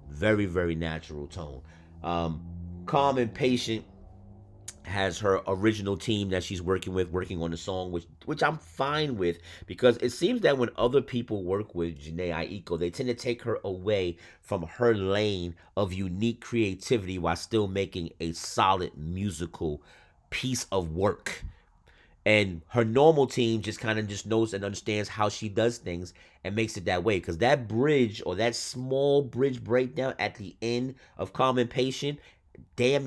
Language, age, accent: English, 30-49, American